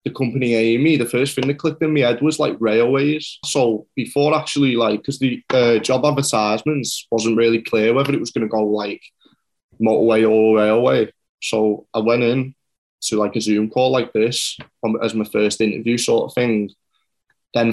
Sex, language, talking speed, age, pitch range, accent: male, English, 185 wpm, 20-39, 105-115 Hz, British